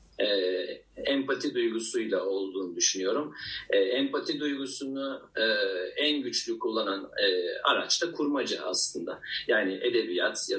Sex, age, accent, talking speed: male, 50-69, native, 115 wpm